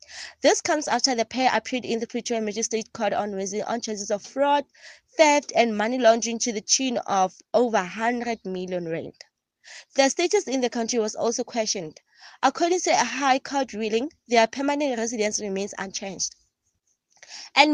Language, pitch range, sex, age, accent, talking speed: English, 215-270 Hz, female, 20-39, South African, 165 wpm